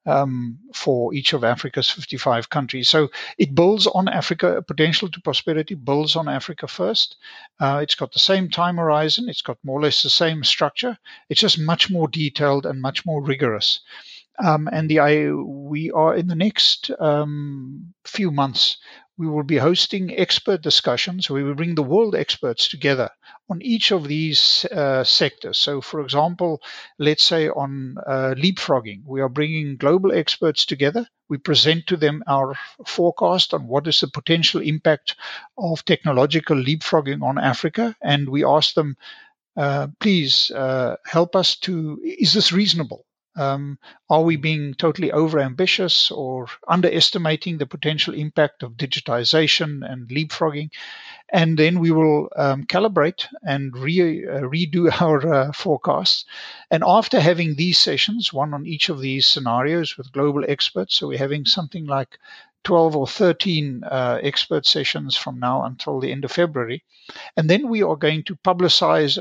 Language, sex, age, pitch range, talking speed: English, male, 50-69, 140-180 Hz, 160 wpm